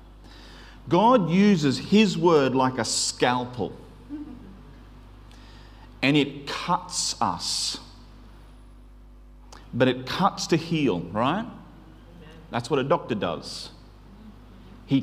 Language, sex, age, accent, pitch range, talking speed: English, male, 40-59, Australian, 120-175 Hz, 90 wpm